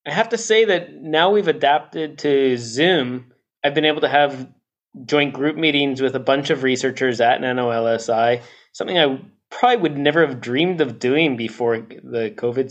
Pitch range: 130-160 Hz